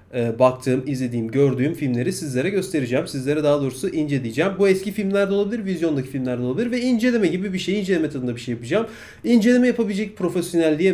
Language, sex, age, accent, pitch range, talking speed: Turkish, male, 30-49, native, 125-185 Hz, 175 wpm